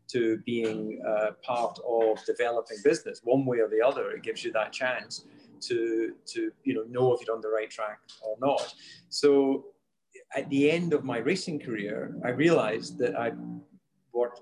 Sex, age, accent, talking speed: male, 40-59, British, 180 wpm